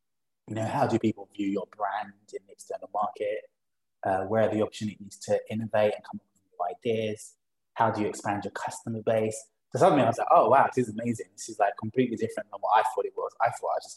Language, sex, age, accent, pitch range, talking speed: English, male, 20-39, British, 95-120 Hz, 250 wpm